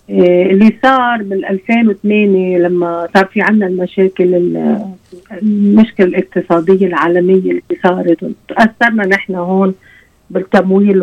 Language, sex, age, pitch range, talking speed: Arabic, female, 50-69, 185-225 Hz, 105 wpm